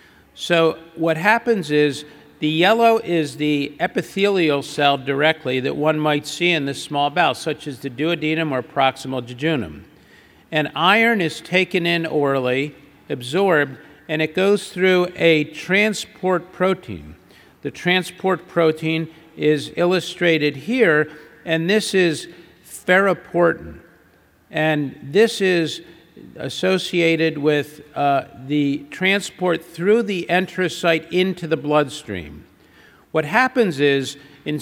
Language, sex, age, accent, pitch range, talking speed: English, male, 50-69, American, 145-180 Hz, 120 wpm